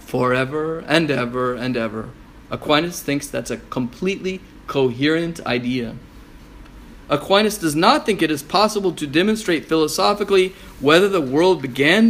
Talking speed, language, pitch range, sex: 130 wpm, English, 140-200 Hz, male